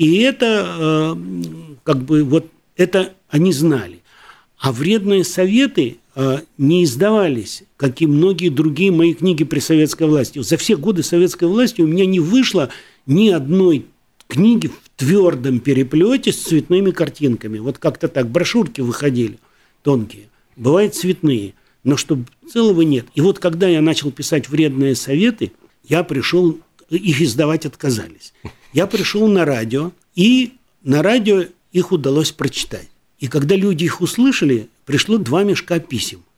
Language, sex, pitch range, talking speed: Russian, male, 145-180 Hz, 140 wpm